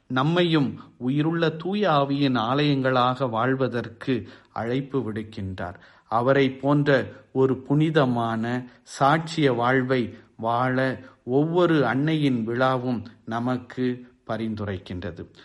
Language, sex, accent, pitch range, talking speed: Tamil, male, native, 130-155 Hz, 75 wpm